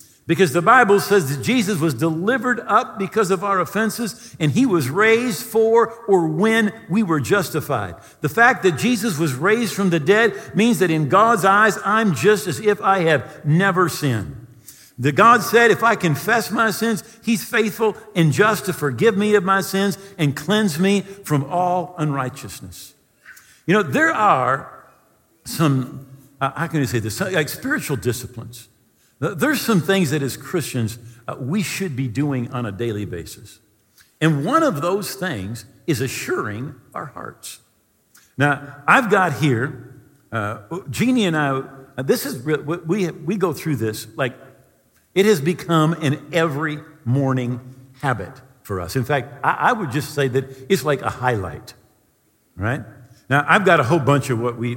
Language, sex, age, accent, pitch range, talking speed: English, male, 50-69, American, 130-195 Hz, 170 wpm